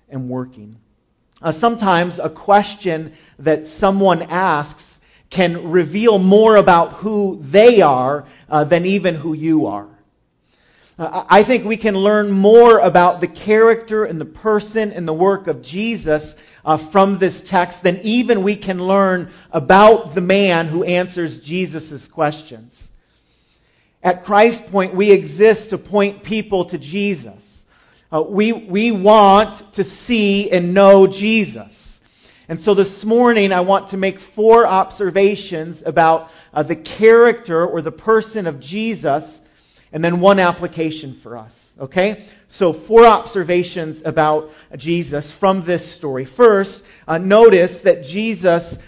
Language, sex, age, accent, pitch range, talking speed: English, male, 40-59, American, 160-205 Hz, 140 wpm